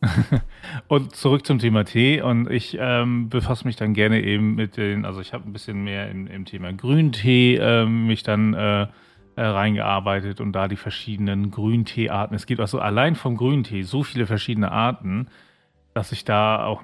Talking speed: 175 wpm